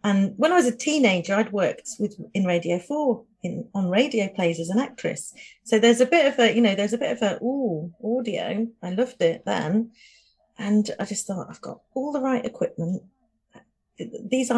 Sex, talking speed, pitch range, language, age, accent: female, 200 wpm, 190-245 Hz, English, 40-59, British